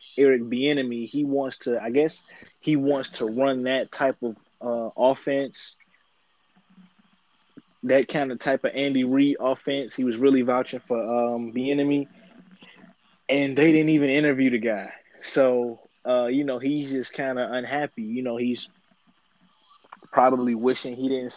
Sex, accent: male, American